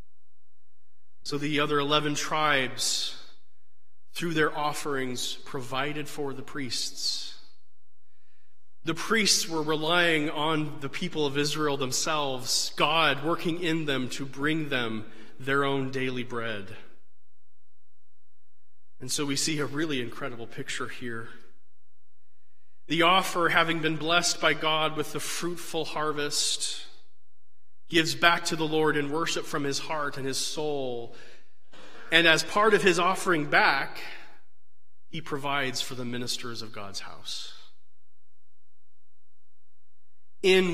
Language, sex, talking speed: English, male, 120 wpm